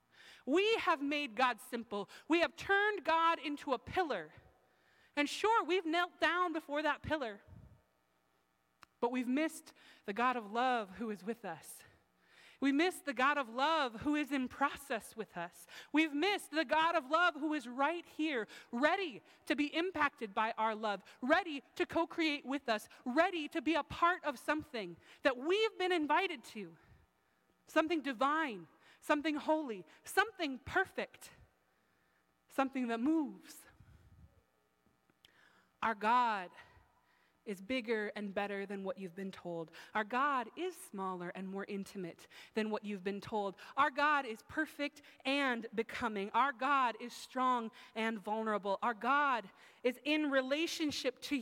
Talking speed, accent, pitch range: 150 wpm, American, 210-310 Hz